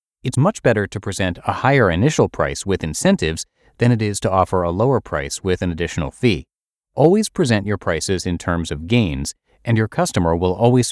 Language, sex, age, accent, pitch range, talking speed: English, male, 30-49, American, 85-120 Hz, 200 wpm